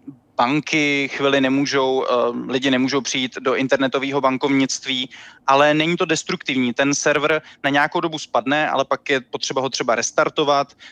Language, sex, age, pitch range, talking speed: Czech, male, 20-39, 135-155 Hz, 145 wpm